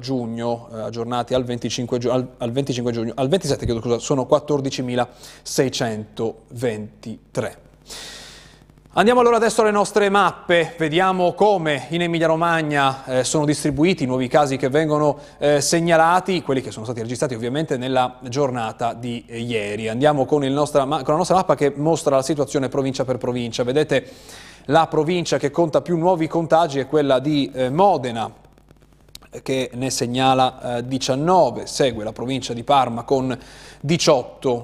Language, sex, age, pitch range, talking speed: Italian, male, 30-49, 120-150 Hz, 140 wpm